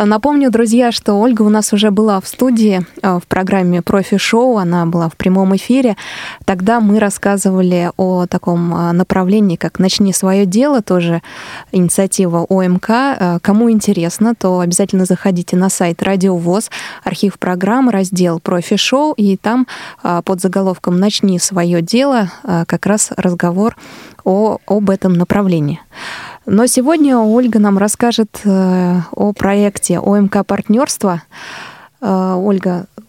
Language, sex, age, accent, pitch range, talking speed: Russian, female, 20-39, native, 180-215 Hz, 120 wpm